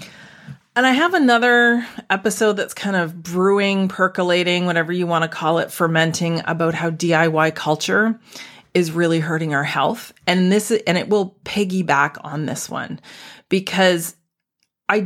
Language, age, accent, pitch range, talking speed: English, 30-49, American, 165-215 Hz, 150 wpm